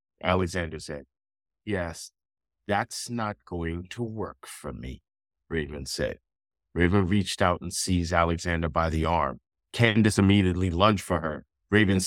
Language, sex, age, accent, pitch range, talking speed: English, male, 50-69, American, 85-105 Hz, 135 wpm